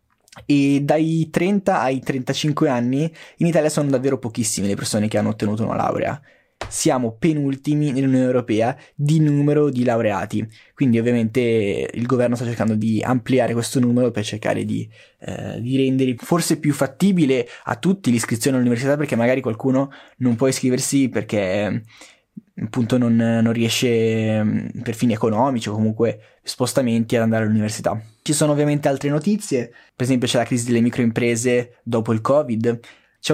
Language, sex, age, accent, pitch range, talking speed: Italian, male, 20-39, native, 115-135 Hz, 155 wpm